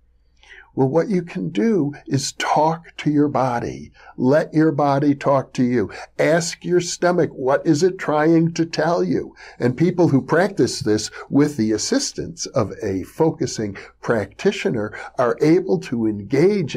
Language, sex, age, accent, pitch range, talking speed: English, male, 60-79, American, 115-170 Hz, 150 wpm